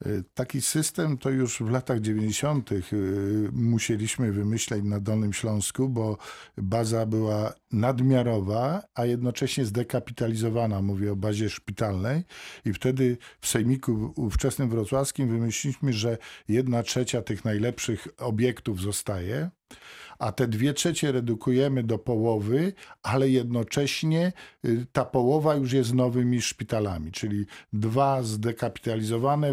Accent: native